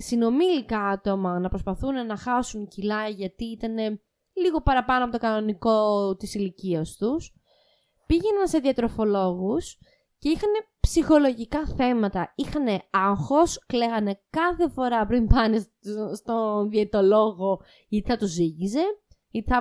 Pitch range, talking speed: 210-290 Hz, 120 wpm